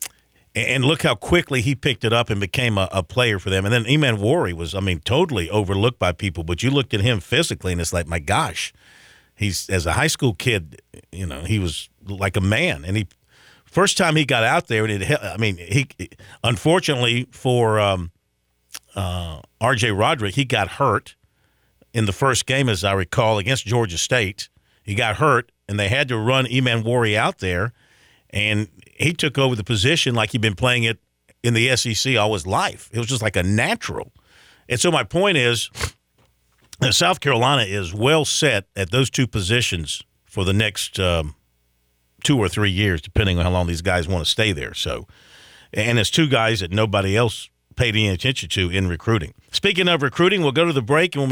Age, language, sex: 50-69, English, male